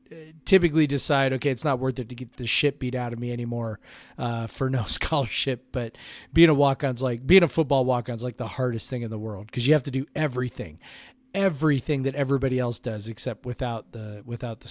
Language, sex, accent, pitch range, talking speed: English, male, American, 125-160 Hz, 210 wpm